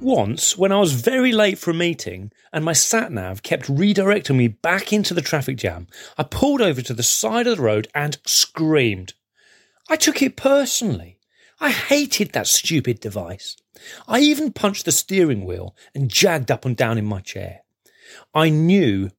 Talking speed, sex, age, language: 175 wpm, male, 40-59, English